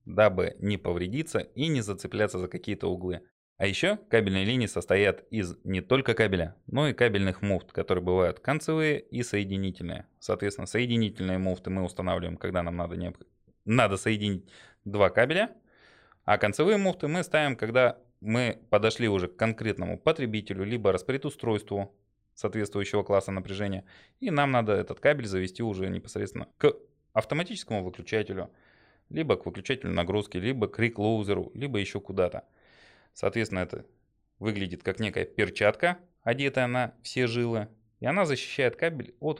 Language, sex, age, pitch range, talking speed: Russian, male, 20-39, 95-125 Hz, 140 wpm